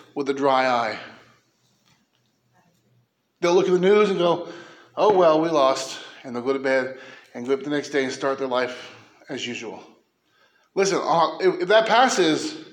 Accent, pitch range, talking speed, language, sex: American, 175-245 Hz, 170 wpm, English, male